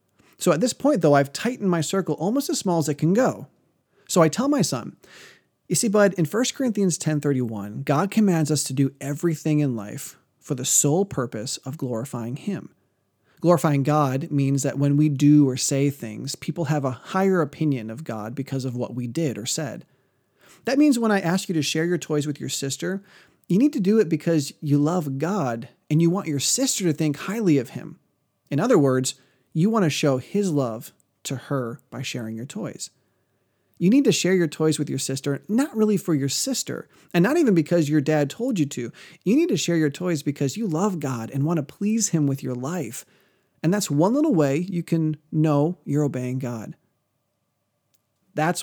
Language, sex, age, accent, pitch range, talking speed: English, male, 30-49, American, 135-180 Hz, 205 wpm